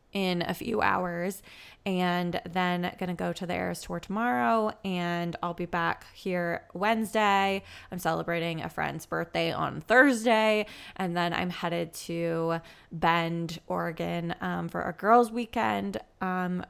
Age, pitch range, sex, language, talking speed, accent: 20-39, 175-210 Hz, female, English, 145 wpm, American